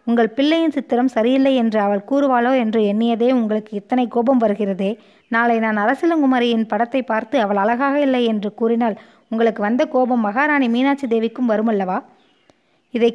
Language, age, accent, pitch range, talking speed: Tamil, 20-39, native, 220-265 Hz, 145 wpm